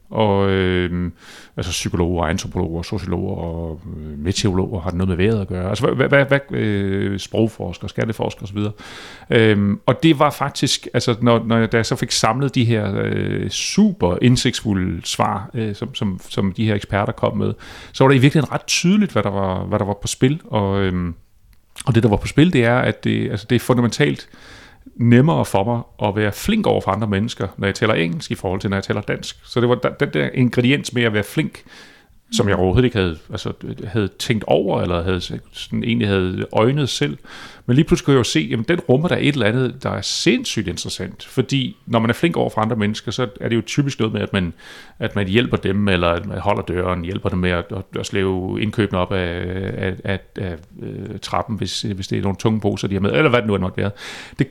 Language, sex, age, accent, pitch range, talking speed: Danish, male, 30-49, native, 95-120 Hz, 220 wpm